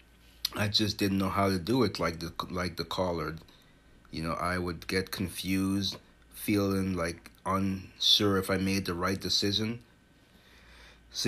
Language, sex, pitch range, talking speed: English, male, 95-105 Hz, 155 wpm